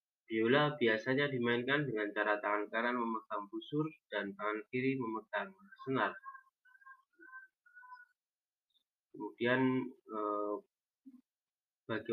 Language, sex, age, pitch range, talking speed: Indonesian, male, 20-39, 110-140 Hz, 85 wpm